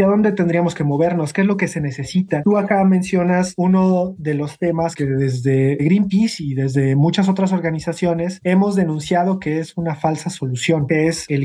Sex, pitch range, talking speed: male, 150-185 Hz, 190 wpm